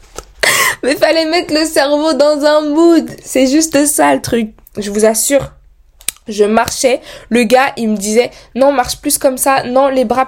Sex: female